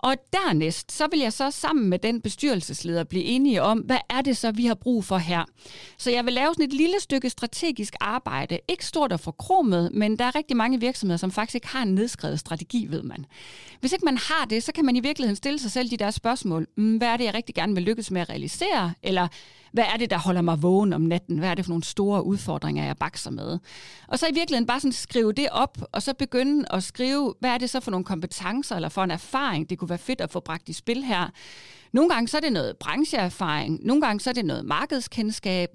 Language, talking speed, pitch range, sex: Danish, 250 wpm, 180-260 Hz, female